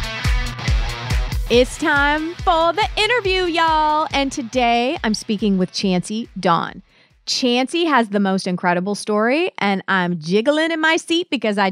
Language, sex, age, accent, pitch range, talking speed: English, female, 30-49, American, 185-265 Hz, 140 wpm